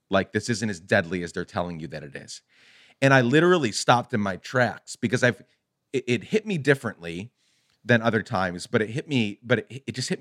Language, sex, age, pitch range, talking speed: English, male, 40-59, 105-150 Hz, 225 wpm